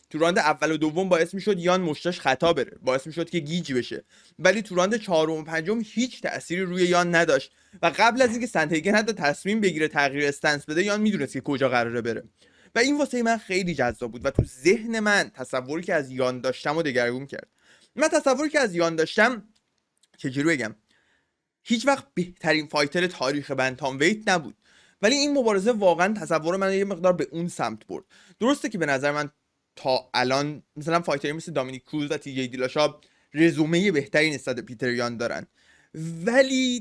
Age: 20-39